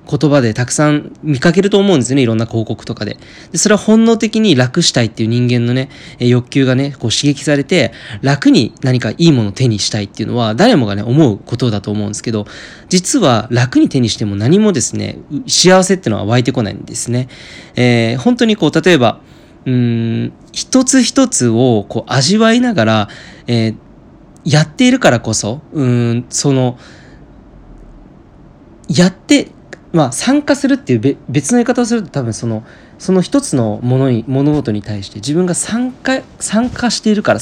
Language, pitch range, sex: Japanese, 115-175 Hz, male